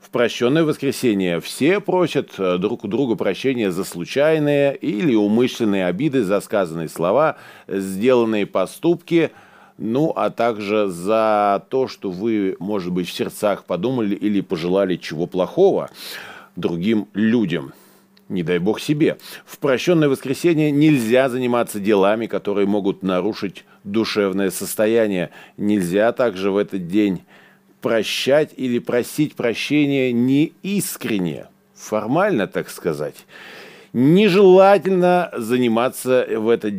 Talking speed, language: 115 wpm, Russian